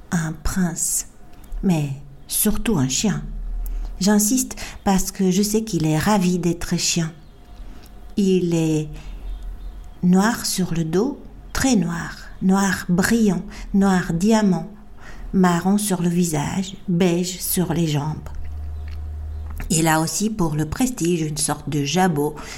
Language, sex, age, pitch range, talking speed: French, female, 60-79, 155-200 Hz, 120 wpm